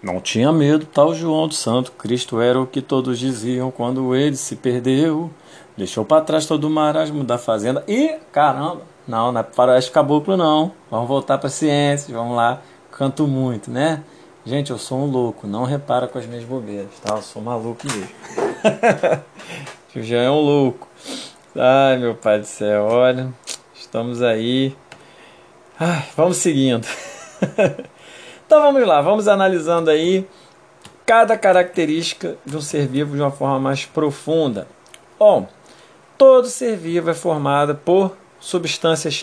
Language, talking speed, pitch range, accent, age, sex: Portuguese, 160 wpm, 130-170 Hz, Brazilian, 20-39, male